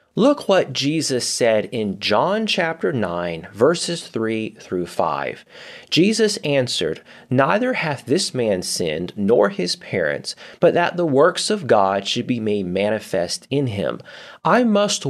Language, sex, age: English, male, 30-49